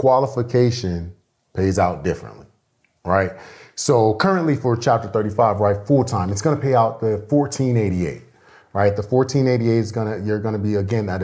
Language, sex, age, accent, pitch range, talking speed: English, male, 30-49, American, 95-120 Hz, 170 wpm